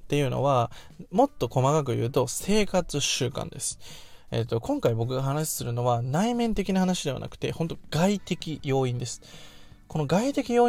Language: Japanese